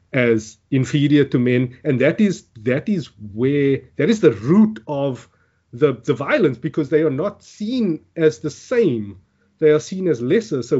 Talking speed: 180 wpm